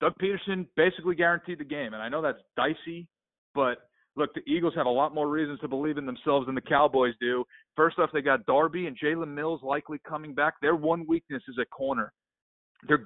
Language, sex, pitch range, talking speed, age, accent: English, male, 135-180 Hz, 210 wpm, 40-59, American